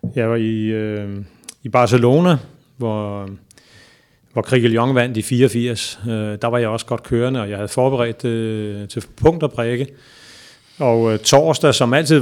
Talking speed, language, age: 155 wpm, Danish, 30-49